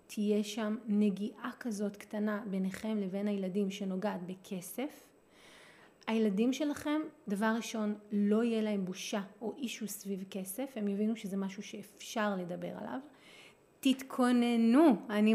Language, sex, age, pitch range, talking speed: Hebrew, female, 30-49, 195-245 Hz, 120 wpm